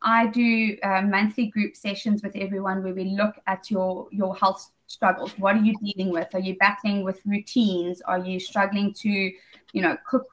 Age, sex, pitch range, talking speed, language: 20-39, female, 190-220 Hz, 190 wpm, English